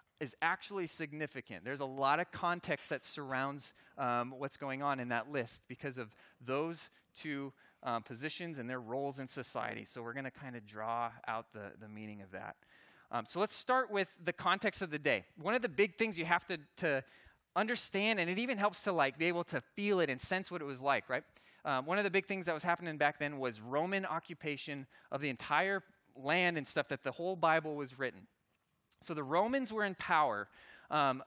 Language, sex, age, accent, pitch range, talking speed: English, male, 20-39, American, 140-185 Hz, 215 wpm